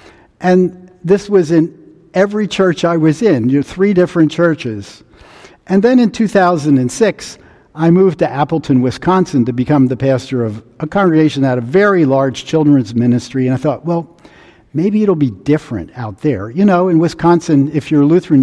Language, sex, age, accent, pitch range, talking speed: English, male, 50-69, American, 135-185 Hz, 180 wpm